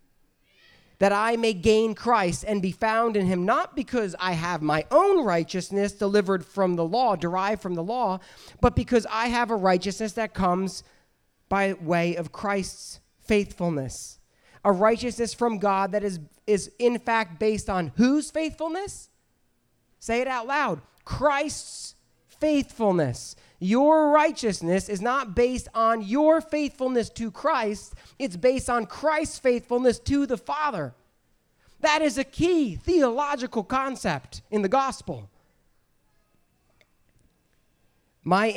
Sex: male